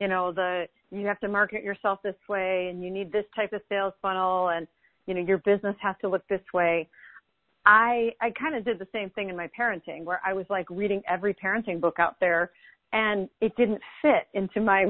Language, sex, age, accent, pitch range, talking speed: English, female, 40-59, American, 180-210 Hz, 220 wpm